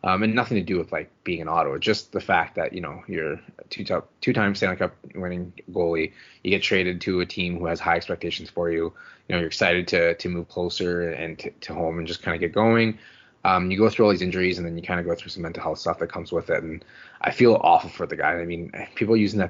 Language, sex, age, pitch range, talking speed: English, male, 20-39, 85-100 Hz, 280 wpm